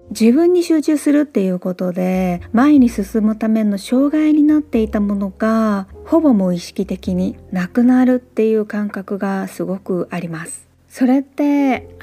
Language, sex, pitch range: Japanese, female, 195-260 Hz